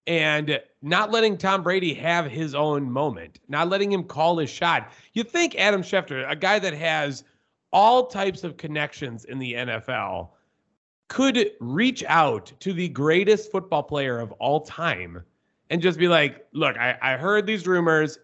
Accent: American